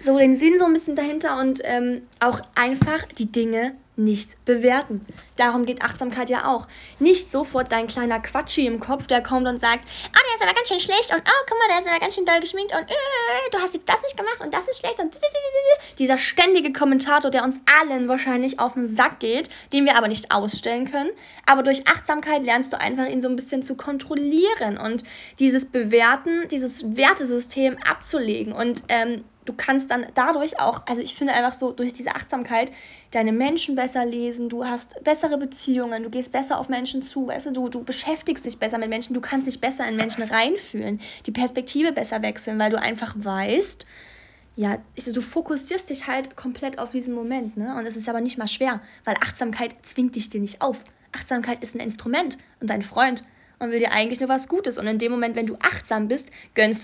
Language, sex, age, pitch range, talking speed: German, female, 10-29, 235-280 Hz, 210 wpm